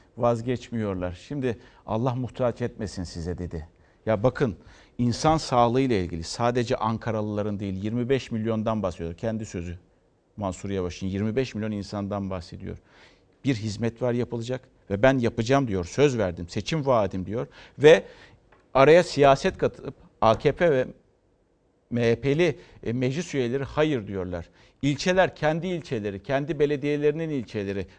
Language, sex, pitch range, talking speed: Turkish, male, 110-160 Hz, 120 wpm